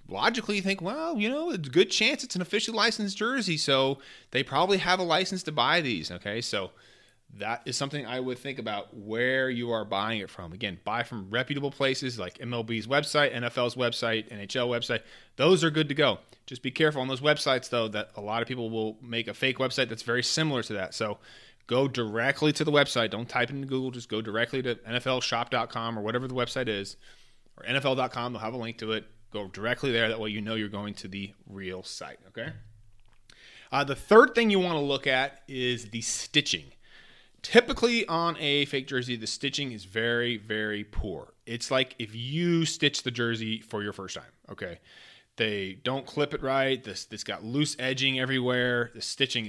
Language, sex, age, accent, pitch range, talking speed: English, male, 30-49, American, 110-140 Hz, 205 wpm